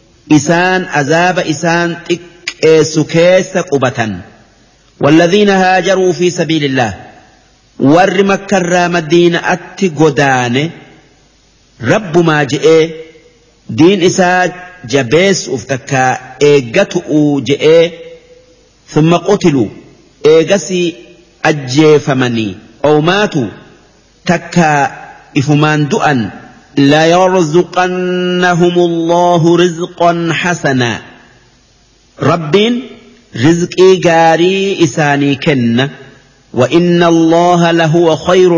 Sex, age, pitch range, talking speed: male, 50-69, 145-180 Hz, 70 wpm